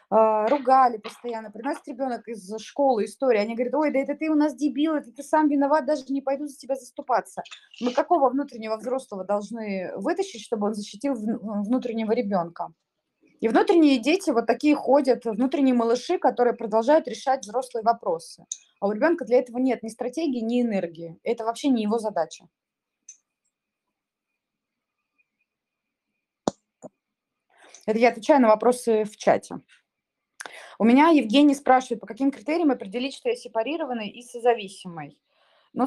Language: Russian